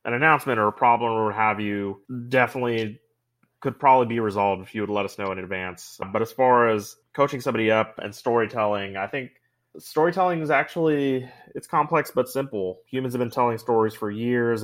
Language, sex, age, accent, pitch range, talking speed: English, male, 20-39, American, 105-125 Hz, 190 wpm